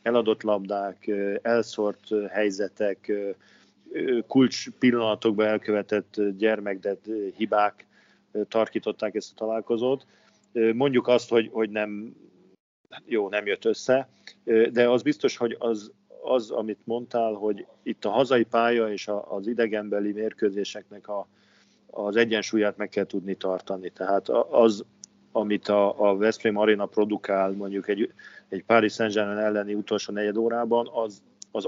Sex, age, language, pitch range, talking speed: male, 40-59, Hungarian, 105-115 Hz, 125 wpm